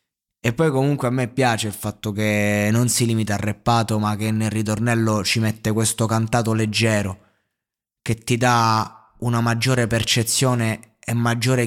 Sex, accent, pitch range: male, native, 100-115 Hz